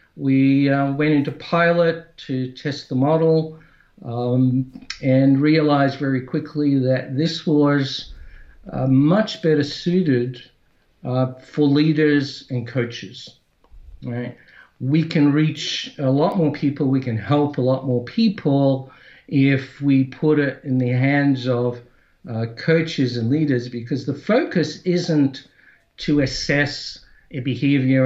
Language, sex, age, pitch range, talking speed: English, male, 60-79, 130-160 Hz, 130 wpm